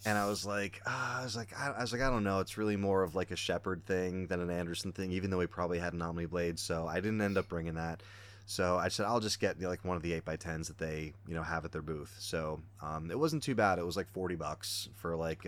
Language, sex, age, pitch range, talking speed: English, male, 30-49, 85-100 Hz, 300 wpm